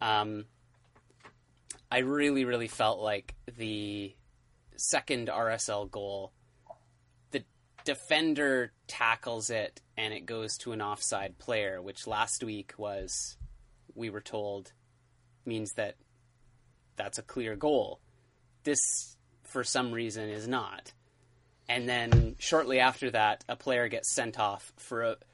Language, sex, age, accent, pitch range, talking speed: English, male, 30-49, American, 110-130 Hz, 120 wpm